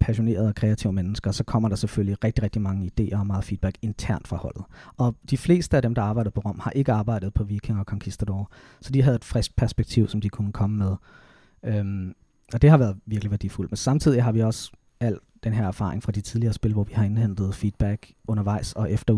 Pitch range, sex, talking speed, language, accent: 105-120 Hz, male, 230 wpm, Danish, native